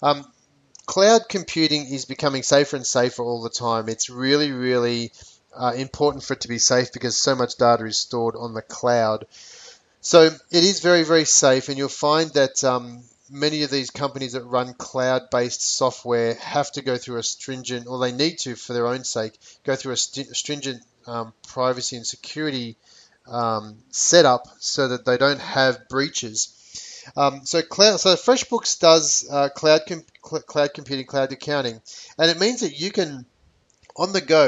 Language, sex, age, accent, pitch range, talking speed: English, male, 30-49, Australian, 125-150 Hz, 180 wpm